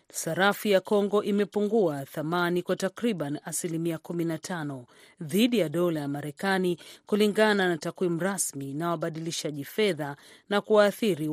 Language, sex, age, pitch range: Swahili, female, 40-59, 160-200 Hz